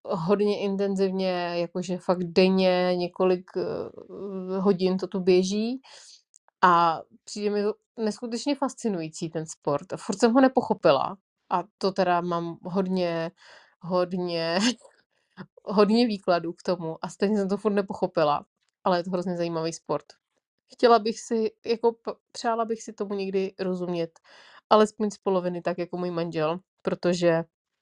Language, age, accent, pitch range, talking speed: Czech, 30-49, native, 170-210 Hz, 135 wpm